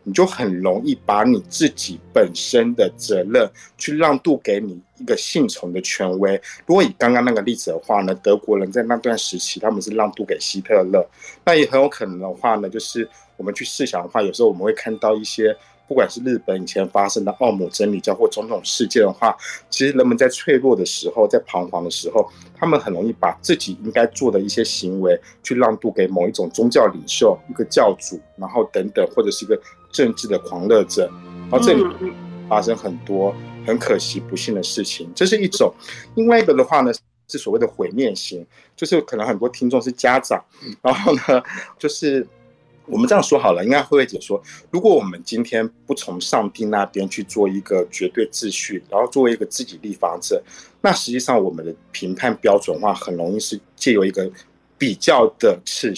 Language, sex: Chinese, male